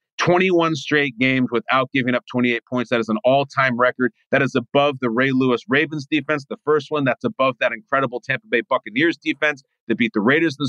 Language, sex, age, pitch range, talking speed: English, male, 30-49, 120-155 Hz, 215 wpm